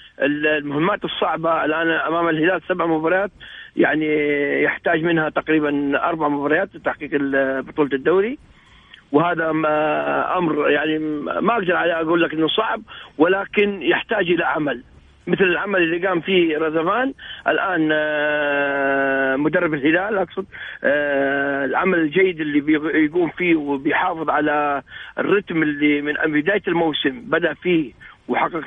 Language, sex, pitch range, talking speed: Arabic, male, 150-180 Hz, 115 wpm